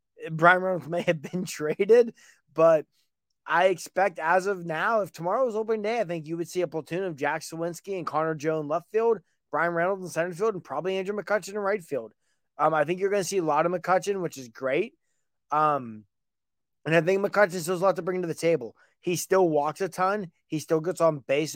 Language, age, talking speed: English, 20-39, 230 wpm